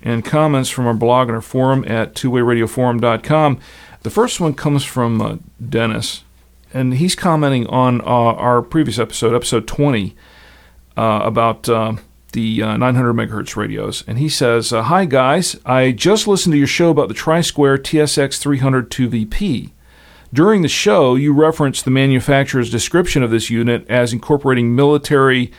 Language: English